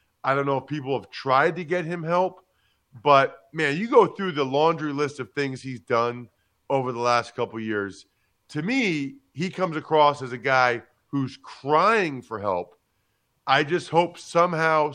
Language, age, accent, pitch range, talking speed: English, 40-59, American, 115-165 Hz, 180 wpm